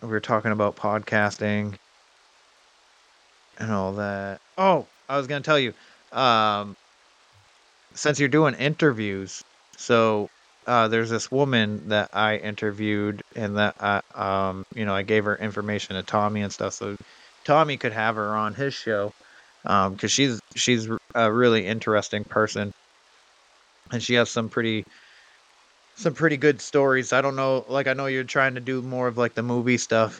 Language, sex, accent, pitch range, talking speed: English, male, American, 105-130 Hz, 165 wpm